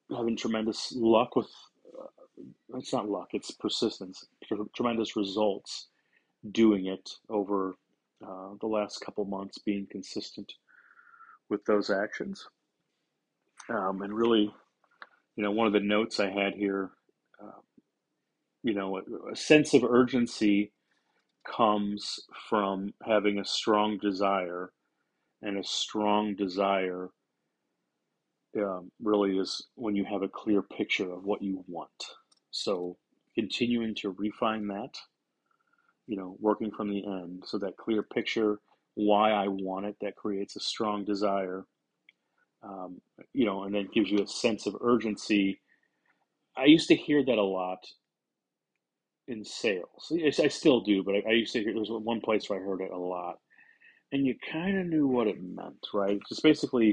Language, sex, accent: English, male, American